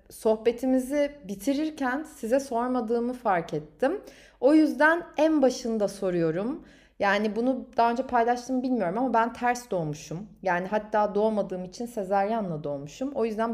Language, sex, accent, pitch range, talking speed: Turkish, female, native, 215-270 Hz, 130 wpm